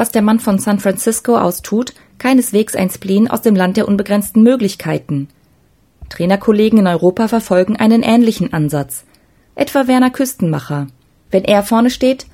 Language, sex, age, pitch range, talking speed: German, female, 20-39, 180-230 Hz, 150 wpm